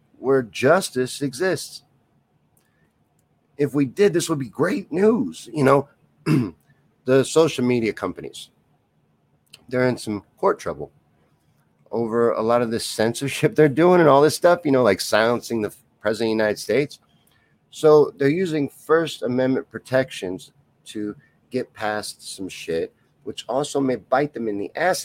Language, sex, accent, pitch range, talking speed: English, male, American, 110-145 Hz, 150 wpm